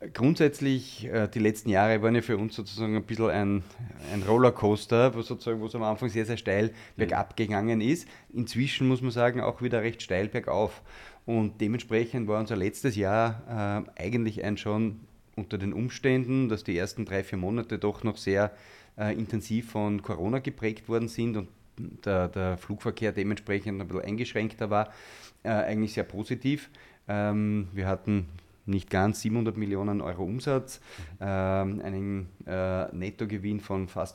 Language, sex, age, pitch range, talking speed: German, male, 30-49, 100-115 Hz, 150 wpm